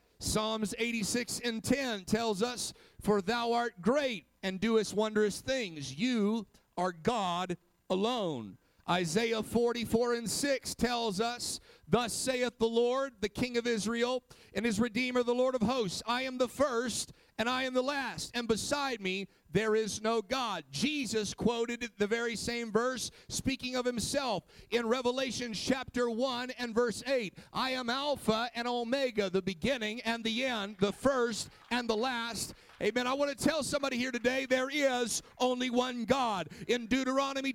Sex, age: male, 50-69